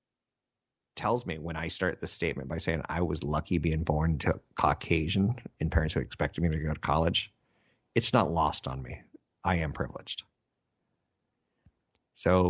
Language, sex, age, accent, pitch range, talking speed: English, male, 50-69, American, 80-100 Hz, 165 wpm